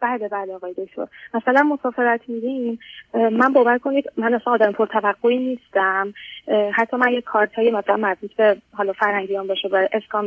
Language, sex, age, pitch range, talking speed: Persian, female, 30-49, 205-255 Hz, 170 wpm